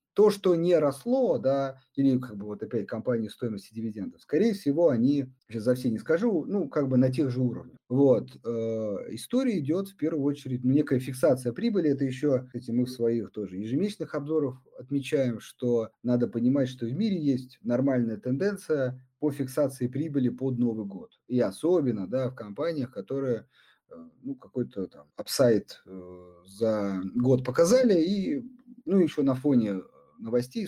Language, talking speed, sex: Russian, 160 wpm, male